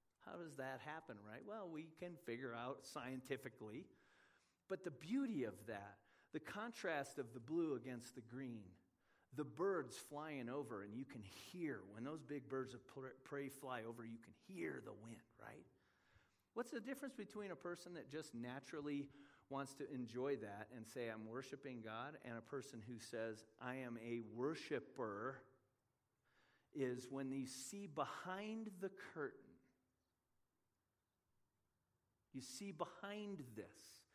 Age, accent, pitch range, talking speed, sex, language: 40-59, American, 120-190 Hz, 150 wpm, male, English